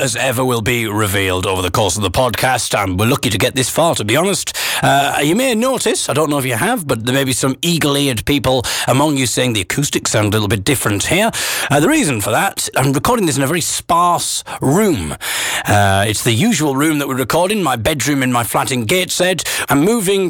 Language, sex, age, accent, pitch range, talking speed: English, male, 40-59, British, 110-150 Hz, 235 wpm